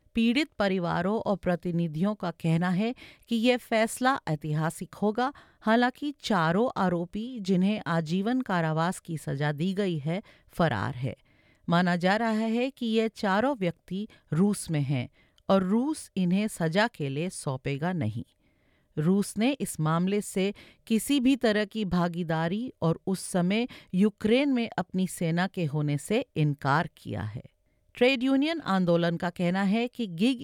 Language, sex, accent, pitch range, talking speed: English, female, Indian, 170-225 Hz, 125 wpm